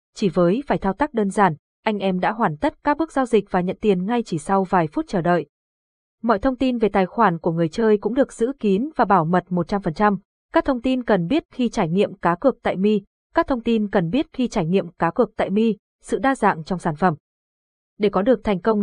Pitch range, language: 185-240 Hz, Vietnamese